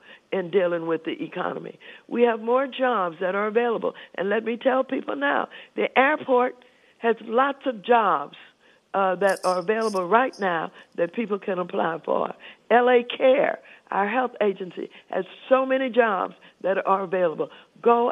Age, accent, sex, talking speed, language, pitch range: 60-79, American, female, 160 wpm, English, 180-235 Hz